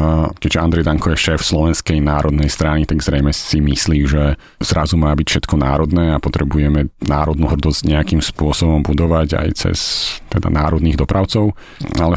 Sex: male